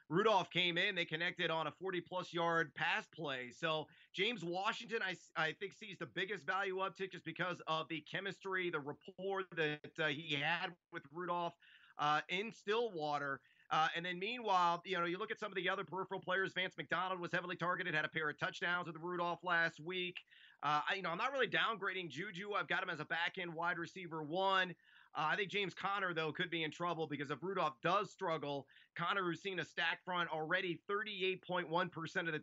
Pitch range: 160-190 Hz